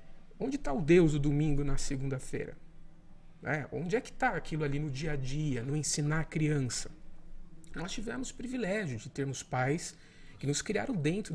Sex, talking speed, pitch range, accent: male, 180 wpm, 135-180 Hz, Brazilian